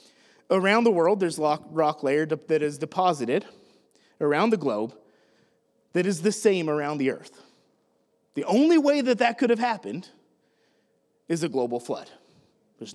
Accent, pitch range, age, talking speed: American, 155-220 Hz, 30-49, 150 wpm